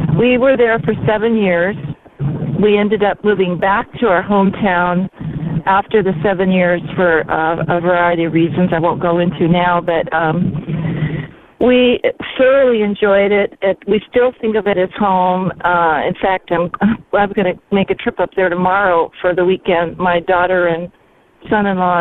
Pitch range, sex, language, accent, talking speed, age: 175-220 Hz, female, English, American, 170 wpm, 50-69